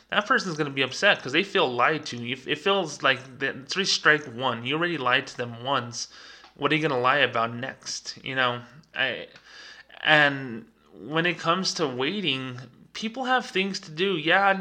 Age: 20-39